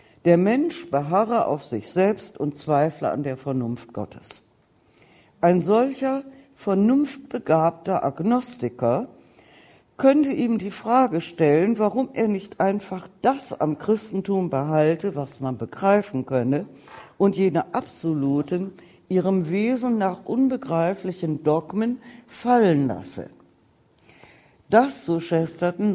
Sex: female